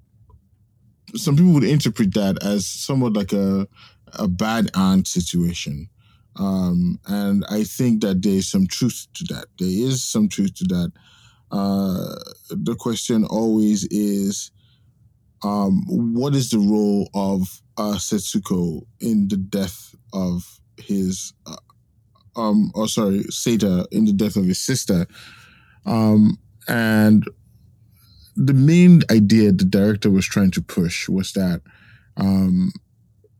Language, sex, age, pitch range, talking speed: English, male, 20-39, 100-125 Hz, 130 wpm